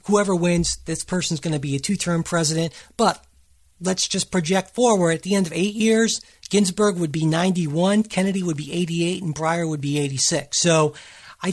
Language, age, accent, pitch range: English, 50-69, American, 155-200 Hz